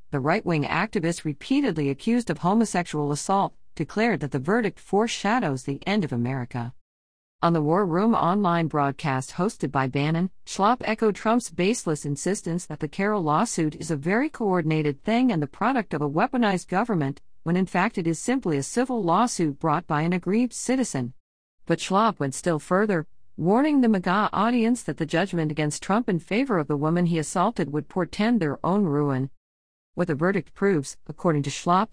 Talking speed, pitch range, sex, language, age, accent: 175 wpm, 140-195 Hz, female, English, 50-69, American